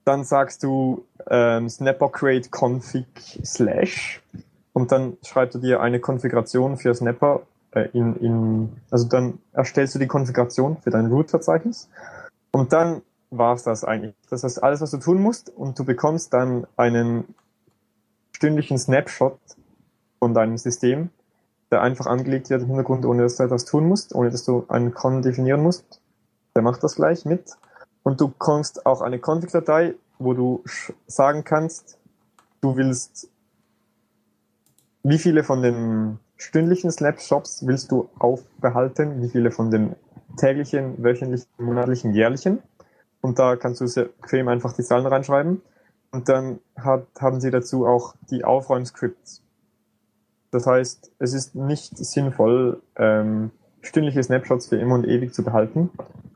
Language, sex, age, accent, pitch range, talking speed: German, male, 20-39, German, 120-145 Hz, 145 wpm